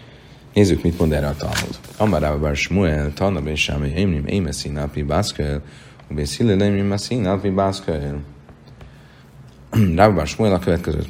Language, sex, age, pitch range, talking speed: Hungarian, male, 40-59, 75-100 Hz, 115 wpm